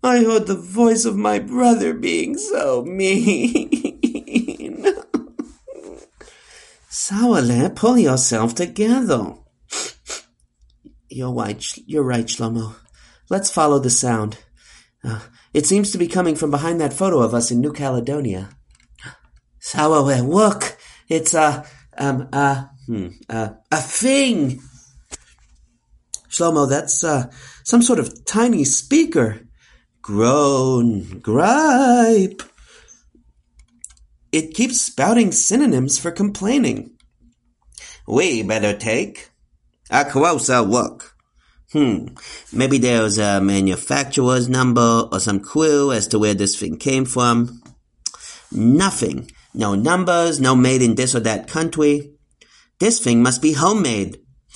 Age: 40-59